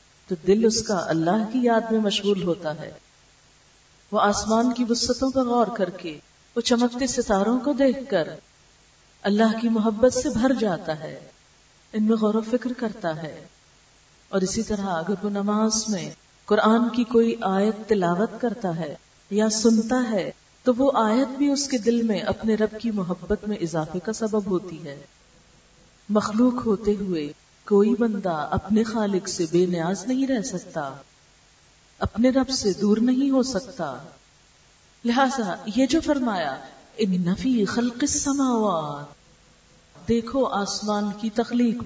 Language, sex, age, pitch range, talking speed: Urdu, female, 40-59, 200-250 Hz, 150 wpm